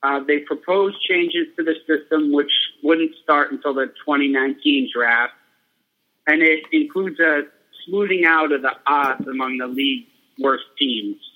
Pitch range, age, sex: 135-170 Hz, 30-49, male